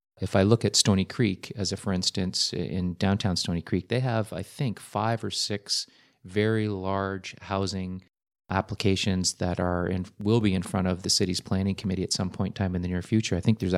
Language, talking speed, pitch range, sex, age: English, 215 wpm, 90-105 Hz, male, 30-49